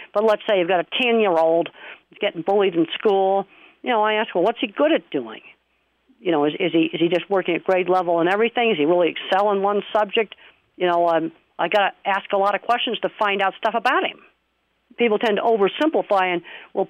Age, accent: 50-69, American